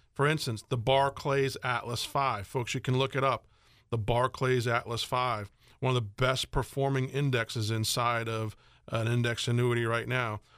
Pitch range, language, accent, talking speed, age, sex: 115-135 Hz, English, American, 165 wpm, 40-59, male